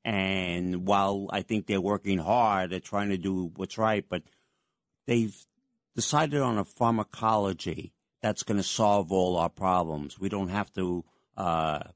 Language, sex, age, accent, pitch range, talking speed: English, male, 50-69, American, 95-110 Hz, 155 wpm